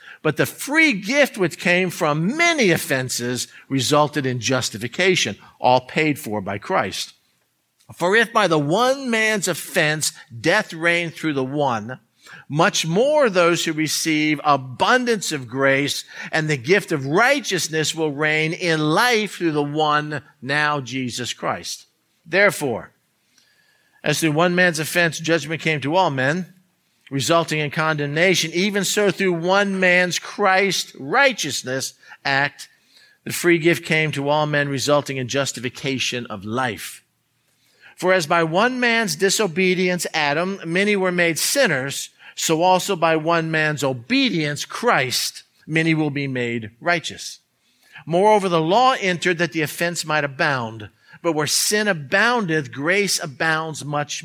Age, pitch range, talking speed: 50-69, 145-185 Hz, 135 wpm